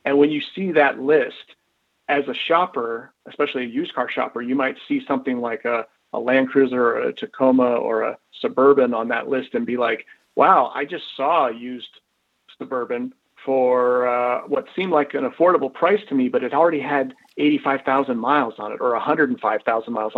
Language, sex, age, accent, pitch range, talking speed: English, male, 40-59, American, 130-160 Hz, 185 wpm